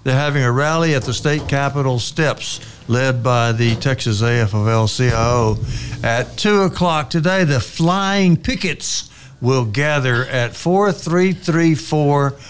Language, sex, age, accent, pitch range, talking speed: English, male, 60-79, American, 115-155 Hz, 120 wpm